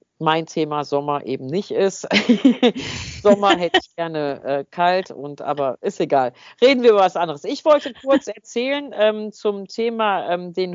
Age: 50-69